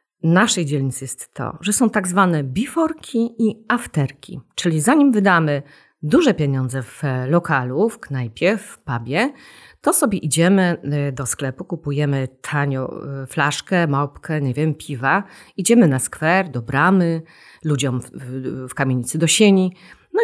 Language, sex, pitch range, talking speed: Polish, female, 140-200 Hz, 135 wpm